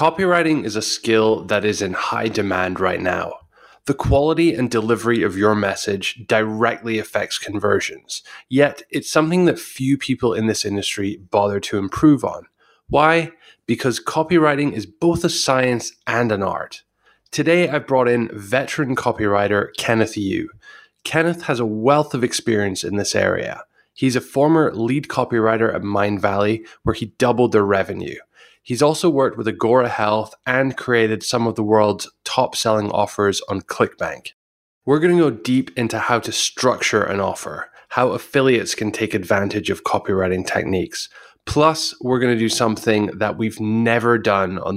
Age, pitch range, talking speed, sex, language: 20-39, 105-130 Hz, 160 wpm, male, English